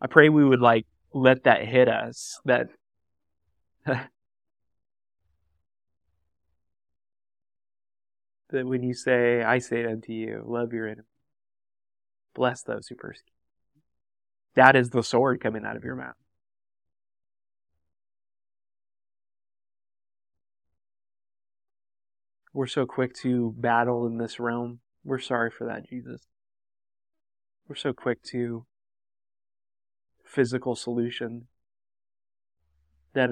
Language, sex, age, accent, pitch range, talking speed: English, male, 20-39, American, 100-120 Hz, 95 wpm